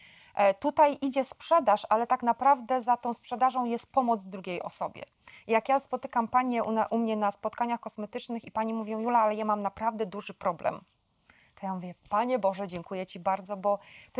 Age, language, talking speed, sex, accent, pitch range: 20-39, Polish, 180 wpm, female, native, 215-265 Hz